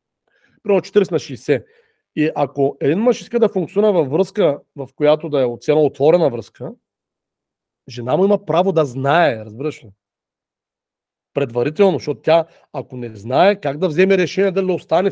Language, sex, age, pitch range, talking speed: Bulgarian, male, 40-59, 155-230 Hz, 160 wpm